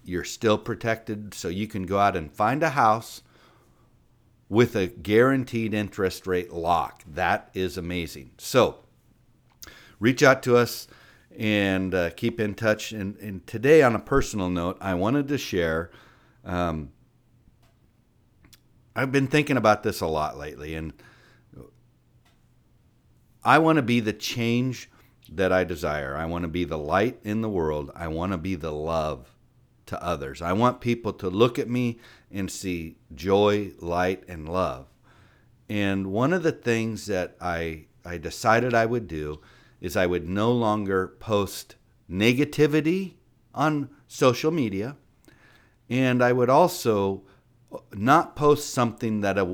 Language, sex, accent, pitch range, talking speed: English, male, American, 90-120 Hz, 145 wpm